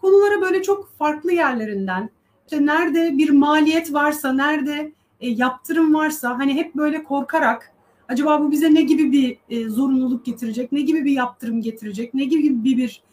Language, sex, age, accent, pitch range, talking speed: Turkish, female, 40-59, native, 240-320 Hz, 150 wpm